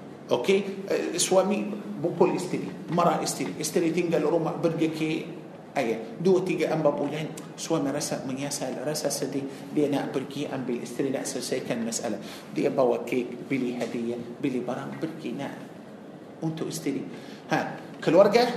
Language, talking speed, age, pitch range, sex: Malay, 135 wpm, 50-69, 160-245 Hz, male